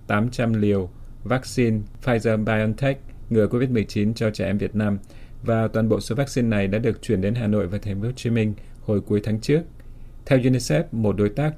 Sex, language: male, Vietnamese